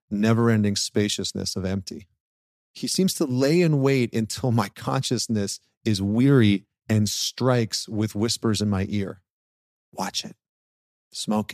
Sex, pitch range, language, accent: male, 100-130 Hz, English, American